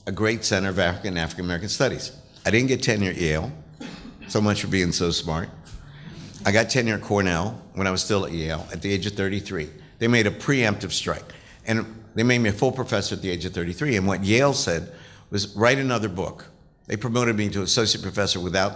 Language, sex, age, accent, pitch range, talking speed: English, male, 60-79, American, 90-110 Hz, 220 wpm